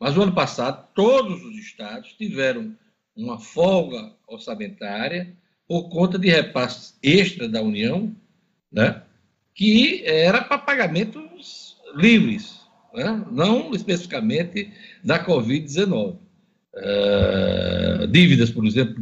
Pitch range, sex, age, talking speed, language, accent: 155-225 Hz, male, 60-79, 105 wpm, Portuguese, Brazilian